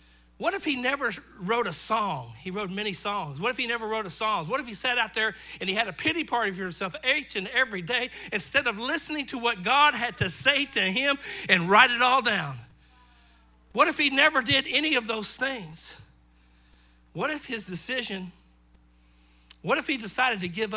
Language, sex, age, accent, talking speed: English, male, 50-69, American, 205 wpm